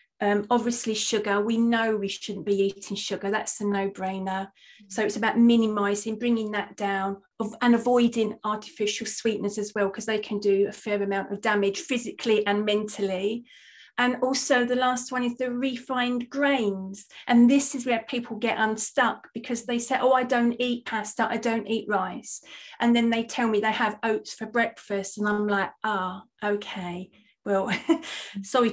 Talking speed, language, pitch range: 175 wpm, English, 205-240 Hz